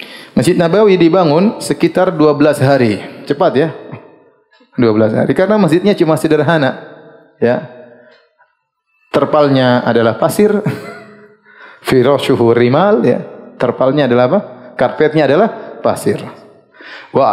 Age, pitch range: 30-49, 125-175 Hz